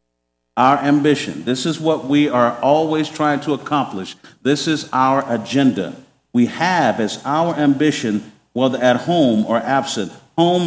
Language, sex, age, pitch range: English, male, 50-69, 125-175 Hz